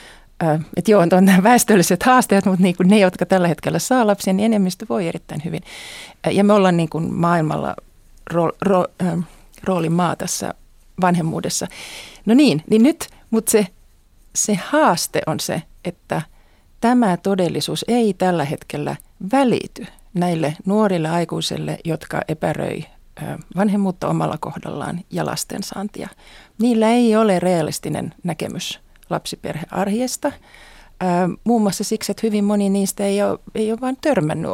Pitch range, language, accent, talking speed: 175-215 Hz, Finnish, native, 130 wpm